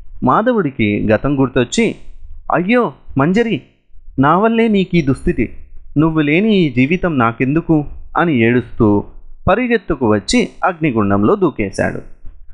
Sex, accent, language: male, native, Telugu